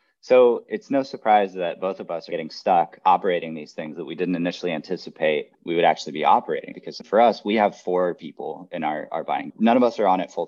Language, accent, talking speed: English, American, 240 wpm